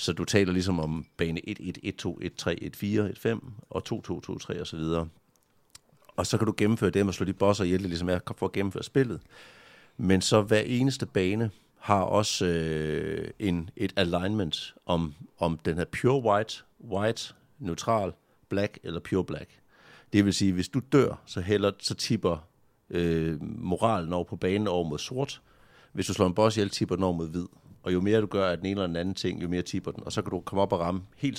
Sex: male